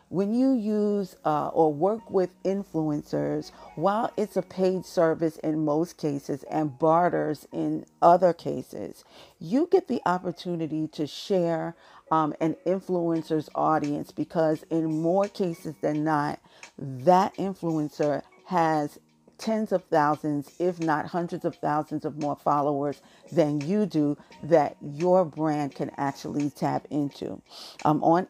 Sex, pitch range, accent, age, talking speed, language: female, 150-180 Hz, American, 50-69, 135 wpm, English